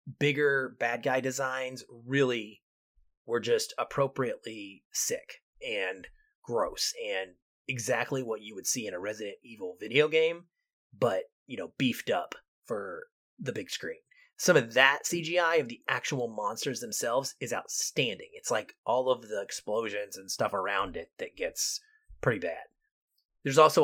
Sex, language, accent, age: male, English, American, 30-49